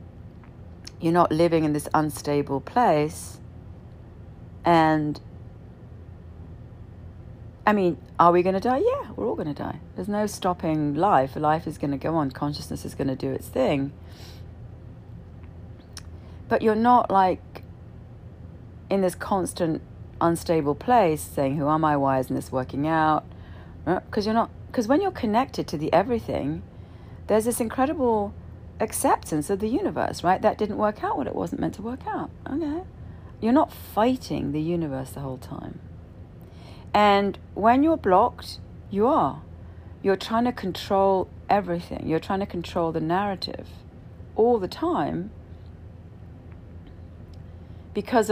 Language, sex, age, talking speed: English, female, 40-59, 140 wpm